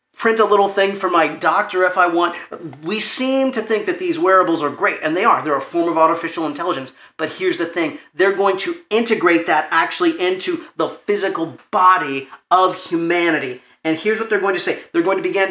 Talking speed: 215 wpm